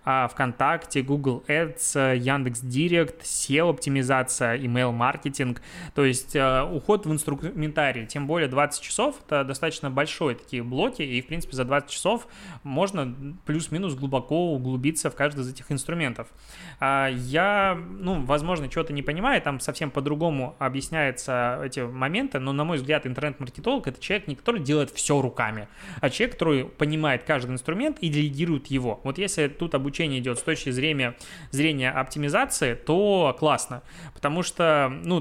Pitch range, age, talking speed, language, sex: 130-165 Hz, 20-39, 145 wpm, Russian, male